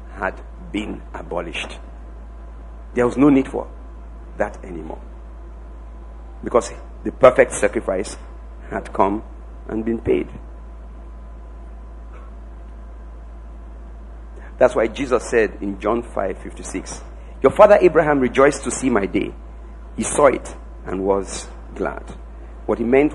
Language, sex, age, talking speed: English, male, 50-69, 110 wpm